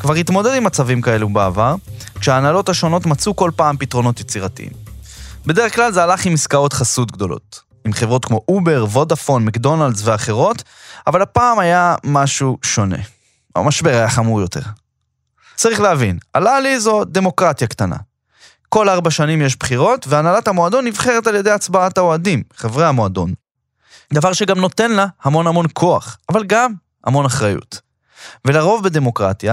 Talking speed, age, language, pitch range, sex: 145 wpm, 20-39, Hebrew, 120-185 Hz, male